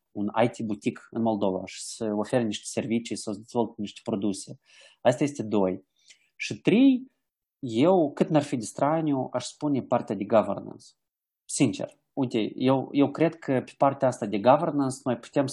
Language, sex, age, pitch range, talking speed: Romanian, male, 30-49, 105-130 Hz, 160 wpm